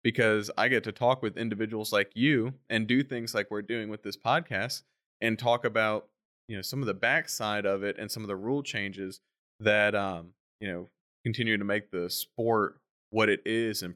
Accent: American